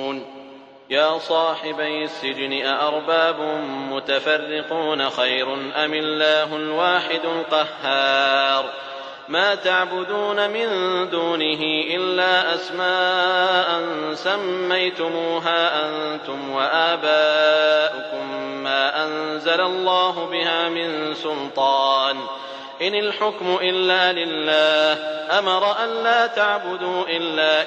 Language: English